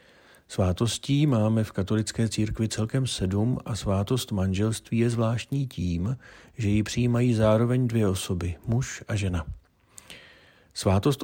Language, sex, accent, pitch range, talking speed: Czech, male, native, 95-115 Hz, 125 wpm